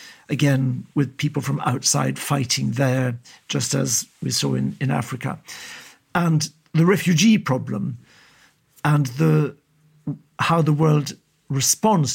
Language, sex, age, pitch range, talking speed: English, male, 60-79, 135-160 Hz, 120 wpm